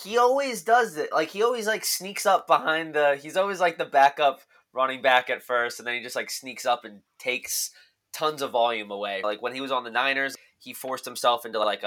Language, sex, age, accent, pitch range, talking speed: English, male, 20-39, American, 115-140 Hz, 235 wpm